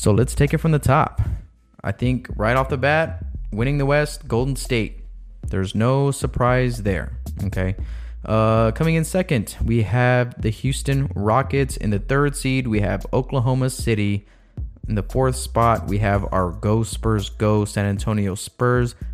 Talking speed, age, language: 165 wpm, 20-39, English